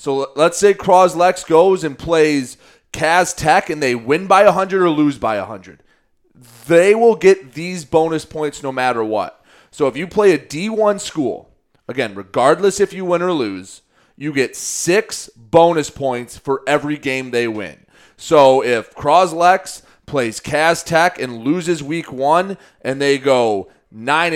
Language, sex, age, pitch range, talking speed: English, male, 30-49, 130-165 Hz, 165 wpm